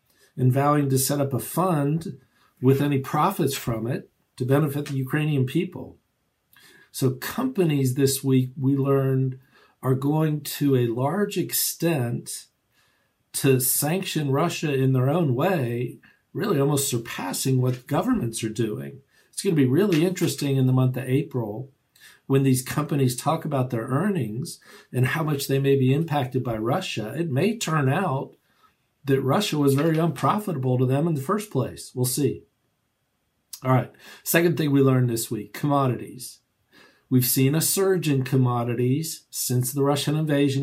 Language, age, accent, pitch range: English, 50-69, American, 125-150 Hz